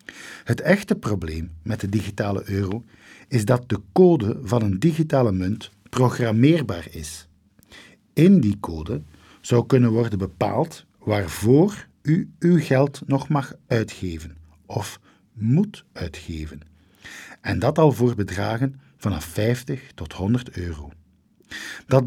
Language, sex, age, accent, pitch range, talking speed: Dutch, male, 50-69, Dutch, 100-135 Hz, 120 wpm